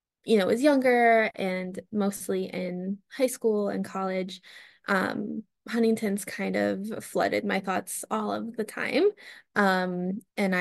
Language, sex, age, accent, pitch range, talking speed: English, female, 10-29, American, 185-225 Hz, 140 wpm